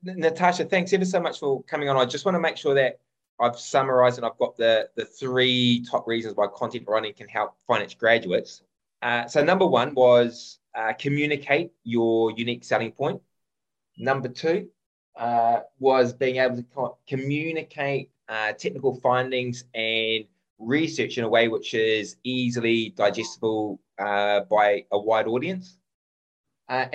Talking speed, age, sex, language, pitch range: 155 wpm, 20-39, male, English, 110-140 Hz